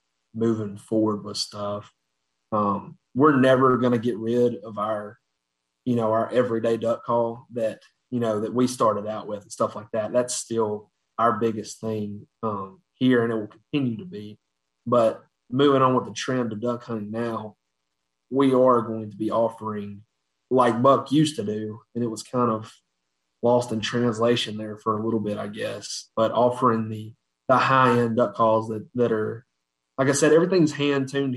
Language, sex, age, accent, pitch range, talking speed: English, male, 30-49, American, 105-120 Hz, 180 wpm